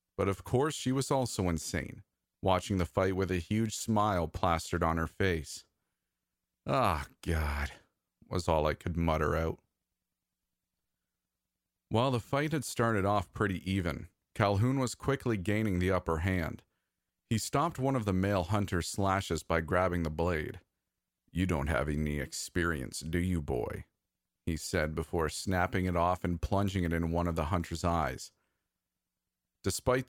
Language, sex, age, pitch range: English, male, 40-59, 85-105 Hz